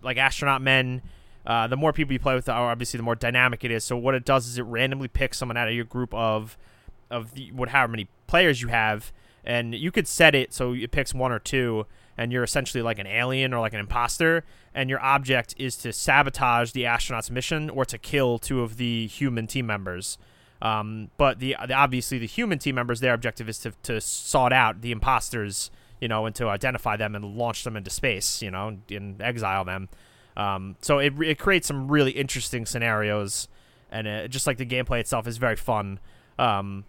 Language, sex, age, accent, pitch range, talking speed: English, male, 30-49, American, 110-130 Hz, 215 wpm